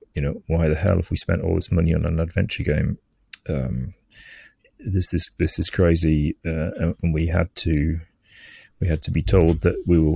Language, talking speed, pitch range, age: English, 215 wpm, 80-95 Hz, 30-49